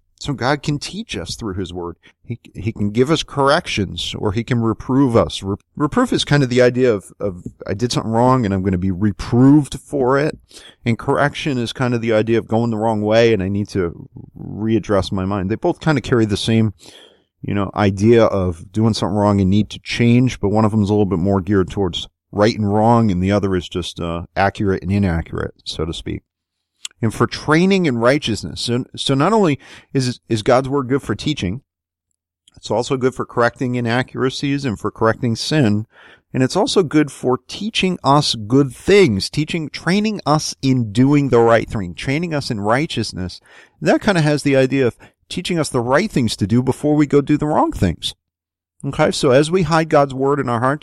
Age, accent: 30-49, American